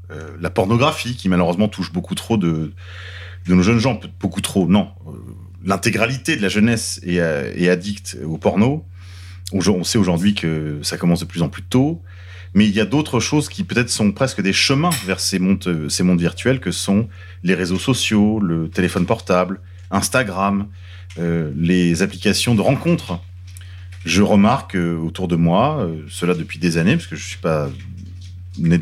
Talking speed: 175 wpm